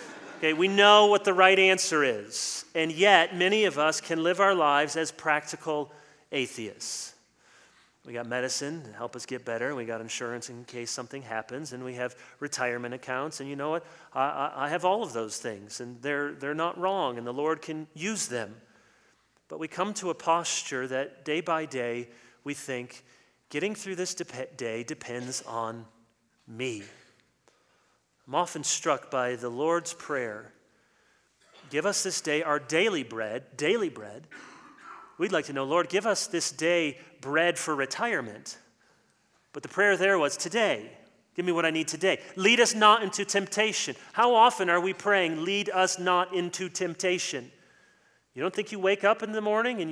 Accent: American